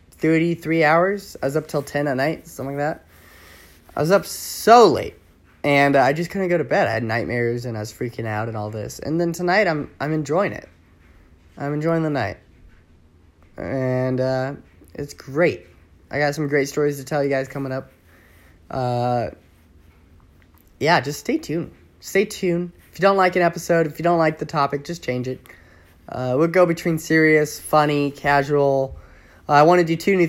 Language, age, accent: English, 20-39, American